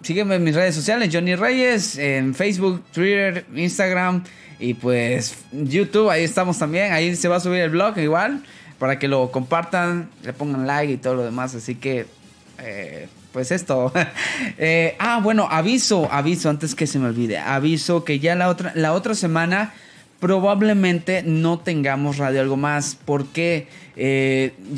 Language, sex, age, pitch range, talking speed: Spanish, male, 20-39, 130-170 Hz, 160 wpm